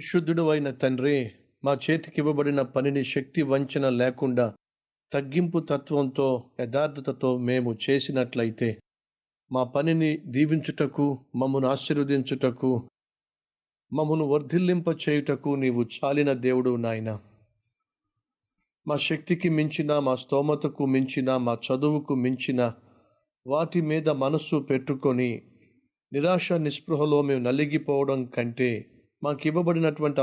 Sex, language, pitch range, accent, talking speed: male, Telugu, 125-155 Hz, native, 90 wpm